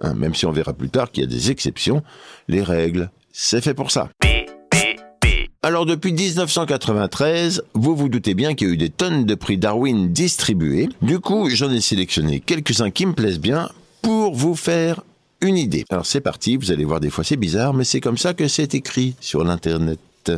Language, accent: French, French